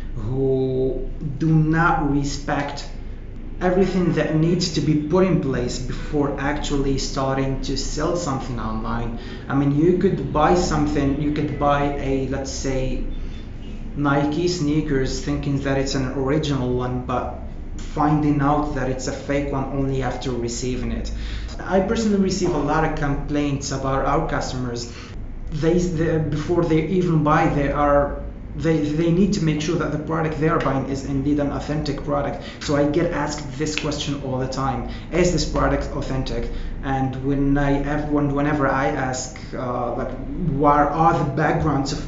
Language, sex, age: English, male, 30-49